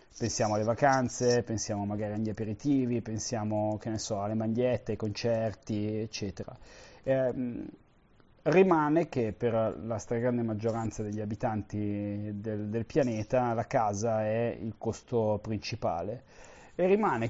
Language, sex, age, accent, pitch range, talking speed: Italian, male, 30-49, native, 110-130 Hz, 125 wpm